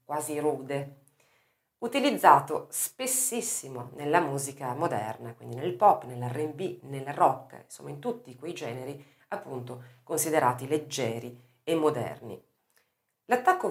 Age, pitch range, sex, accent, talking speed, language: 40-59, 130-190 Hz, female, native, 105 wpm, Italian